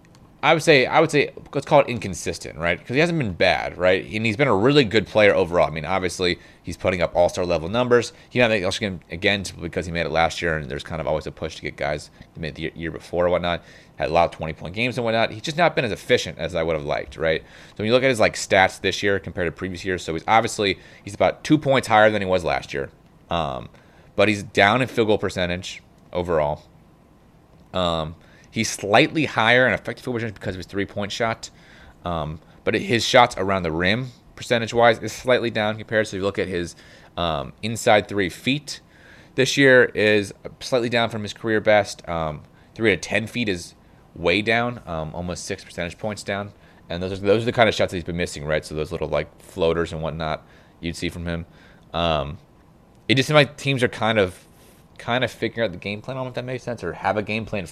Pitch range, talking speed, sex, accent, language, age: 85-115 Hz, 235 wpm, male, American, English, 30-49